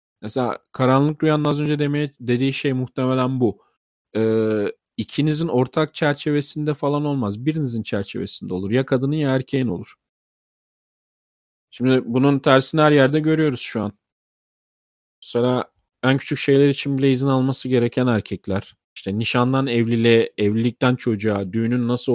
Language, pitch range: Turkish, 115-140 Hz